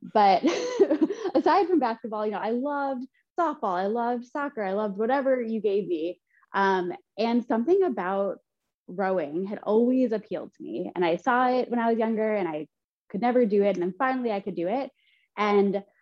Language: English